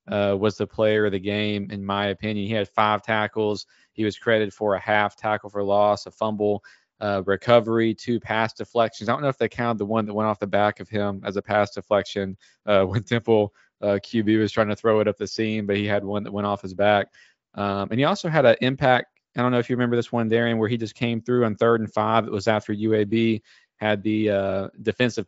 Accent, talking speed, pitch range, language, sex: American, 245 wpm, 105-115 Hz, English, male